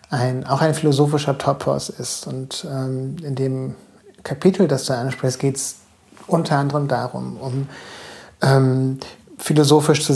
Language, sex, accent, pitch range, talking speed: German, male, German, 130-145 Hz, 135 wpm